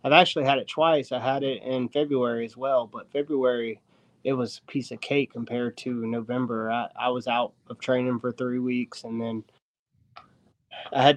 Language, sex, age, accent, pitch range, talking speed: English, male, 20-39, American, 125-145 Hz, 195 wpm